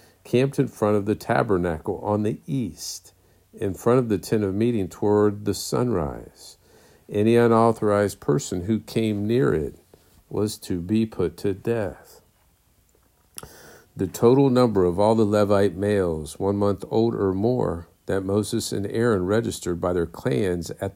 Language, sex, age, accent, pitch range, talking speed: English, male, 50-69, American, 95-115 Hz, 155 wpm